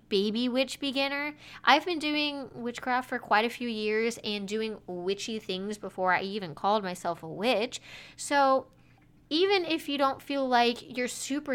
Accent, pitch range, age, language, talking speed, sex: American, 195-265 Hz, 20-39, English, 165 wpm, female